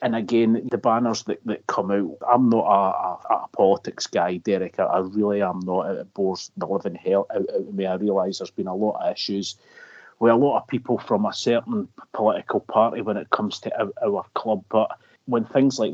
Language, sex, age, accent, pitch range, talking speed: English, male, 30-49, British, 95-115 Hz, 215 wpm